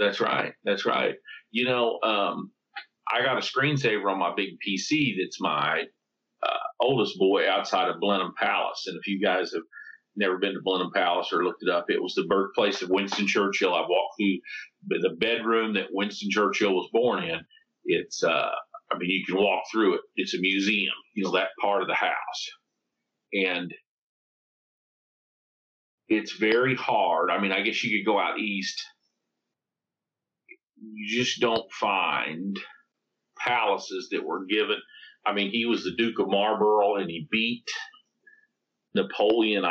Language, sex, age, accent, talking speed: English, male, 40-59, American, 165 wpm